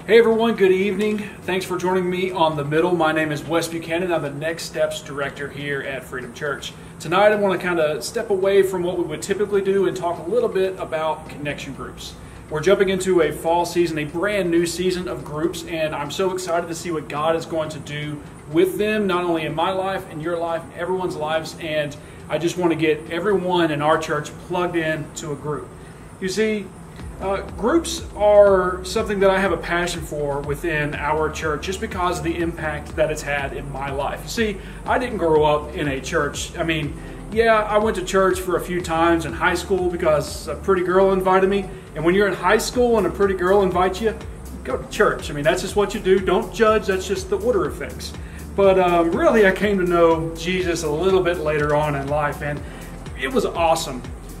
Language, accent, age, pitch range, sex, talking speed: English, American, 30-49, 155-195 Hz, male, 220 wpm